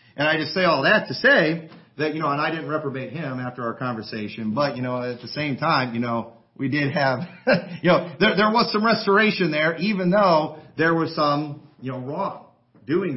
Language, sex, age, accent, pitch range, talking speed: English, male, 40-59, American, 140-190 Hz, 220 wpm